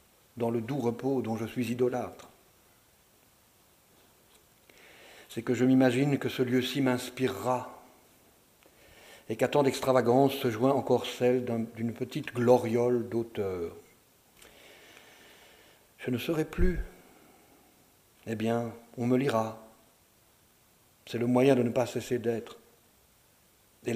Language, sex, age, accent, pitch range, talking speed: French, male, 60-79, French, 115-130 Hz, 115 wpm